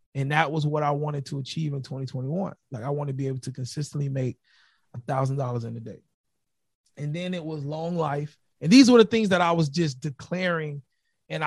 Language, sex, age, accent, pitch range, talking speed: English, male, 30-49, American, 150-235 Hz, 210 wpm